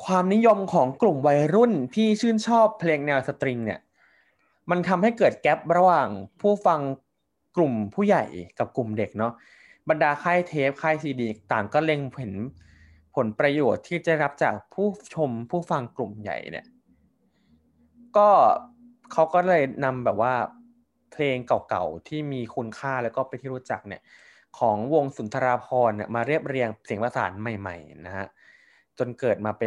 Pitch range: 115-170 Hz